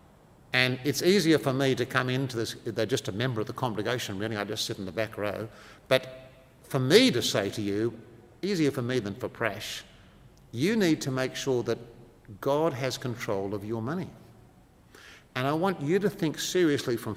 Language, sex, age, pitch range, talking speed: English, male, 50-69, 115-145 Hz, 200 wpm